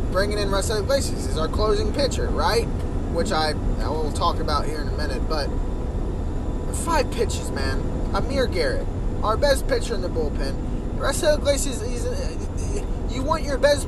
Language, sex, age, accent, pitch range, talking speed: English, male, 20-39, American, 80-125 Hz, 170 wpm